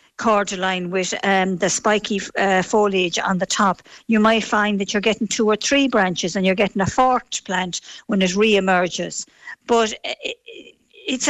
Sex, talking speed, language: female, 165 wpm, English